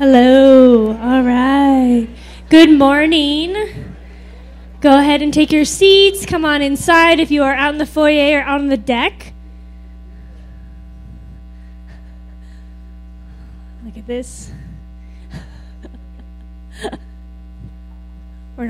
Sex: female